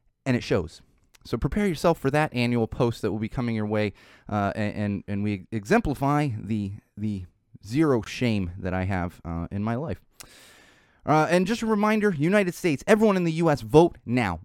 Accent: American